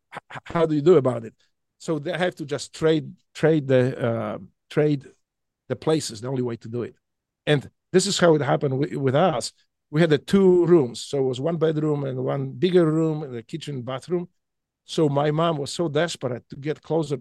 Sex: male